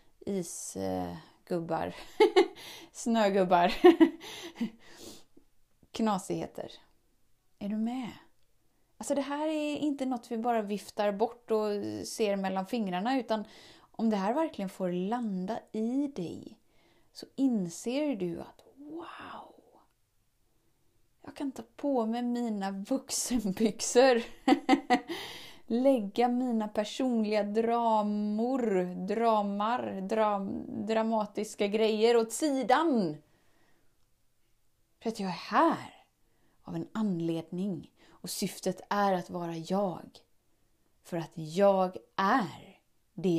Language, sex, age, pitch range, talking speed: Swedish, female, 30-49, 185-245 Hz, 95 wpm